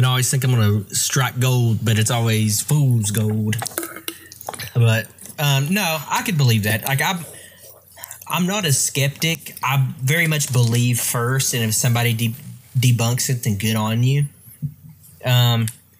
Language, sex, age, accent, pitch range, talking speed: English, male, 20-39, American, 110-130 Hz, 160 wpm